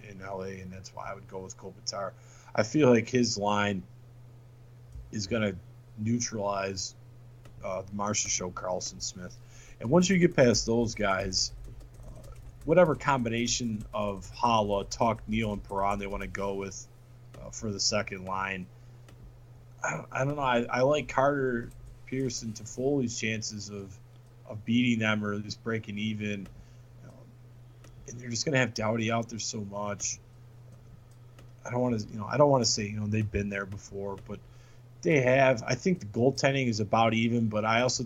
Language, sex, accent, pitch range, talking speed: English, male, American, 105-120 Hz, 175 wpm